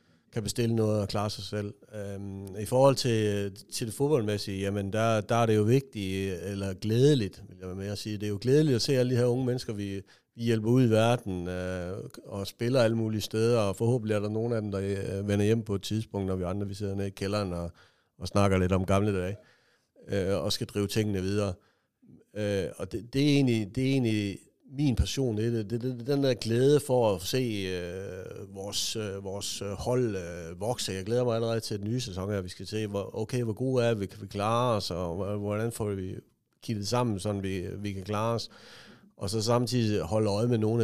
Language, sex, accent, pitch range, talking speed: Danish, male, native, 100-115 Hz, 215 wpm